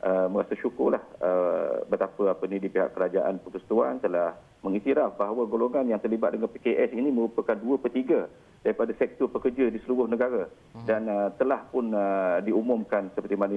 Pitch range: 100-120 Hz